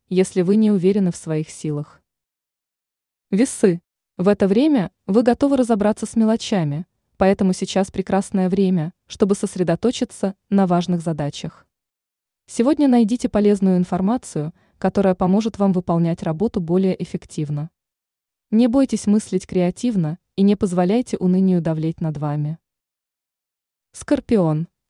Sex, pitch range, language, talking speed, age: female, 175-220 Hz, Russian, 115 wpm, 20-39